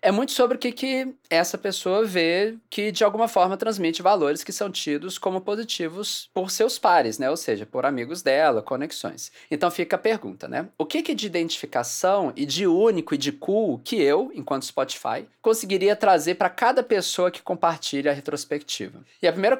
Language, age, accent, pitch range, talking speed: English, 20-39, Brazilian, 155-205 Hz, 190 wpm